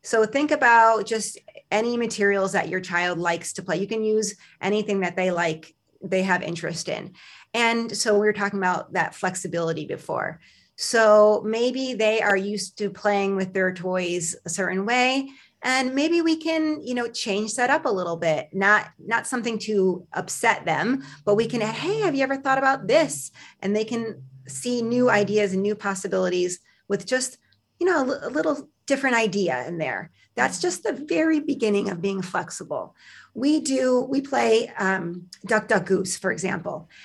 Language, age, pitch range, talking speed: English, 30-49, 185-240 Hz, 180 wpm